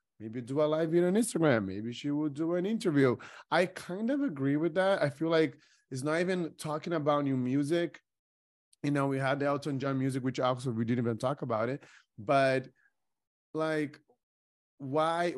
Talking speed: 185 wpm